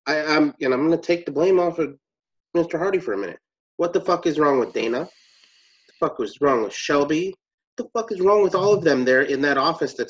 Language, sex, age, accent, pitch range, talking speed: English, male, 30-49, American, 130-200 Hz, 250 wpm